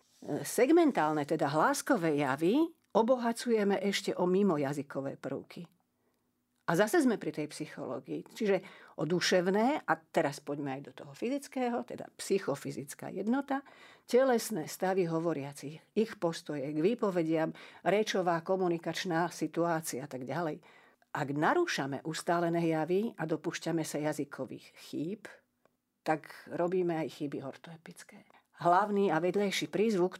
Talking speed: 115 wpm